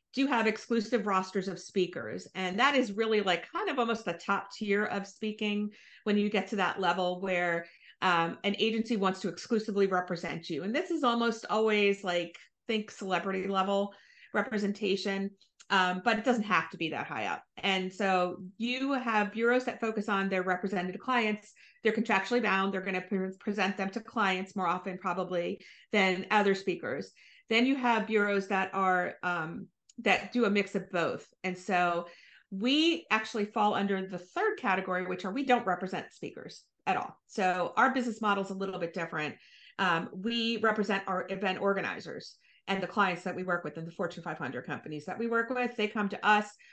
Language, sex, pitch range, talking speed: English, female, 185-225 Hz, 190 wpm